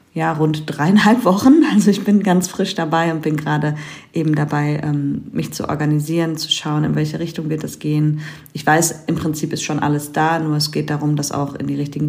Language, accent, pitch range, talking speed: German, German, 145-170 Hz, 215 wpm